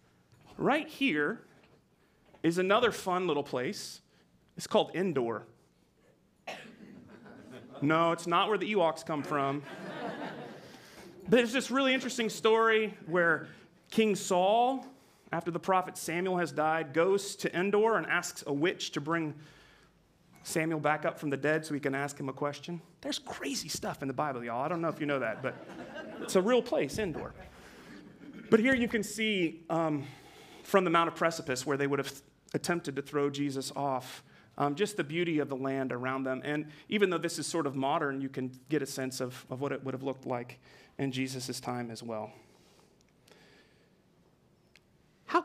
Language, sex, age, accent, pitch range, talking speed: English, male, 30-49, American, 140-205 Hz, 175 wpm